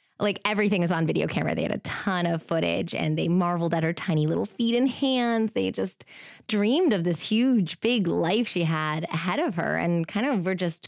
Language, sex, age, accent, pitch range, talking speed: English, female, 20-39, American, 165-220 Hz, 220 wpm